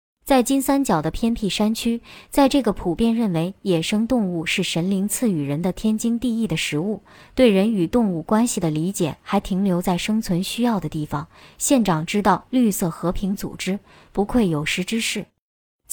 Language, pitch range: Chinese, 185-240 Hz